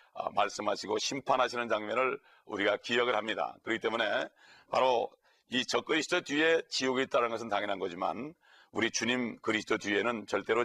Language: Korean